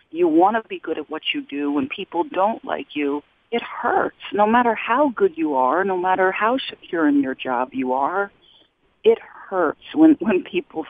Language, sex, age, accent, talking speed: English, female, 50-69, American, 200 wpm